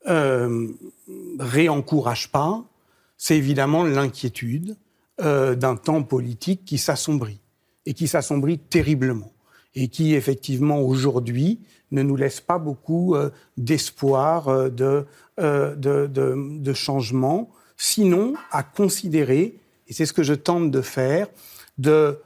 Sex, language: male, French